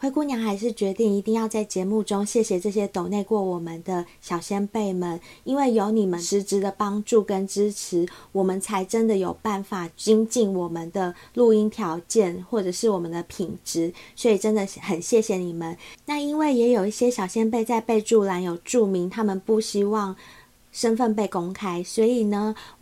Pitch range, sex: 190-235 Hz, female